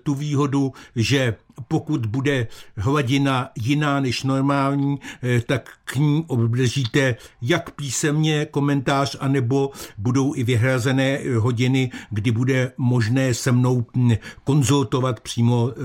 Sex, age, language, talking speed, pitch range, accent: male, 60-79, Czech, 105 wpm, 120-140 Hz, native